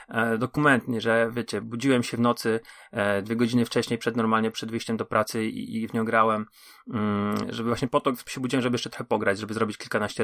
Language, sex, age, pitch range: Polish, male, 30-49, 100-115 Hz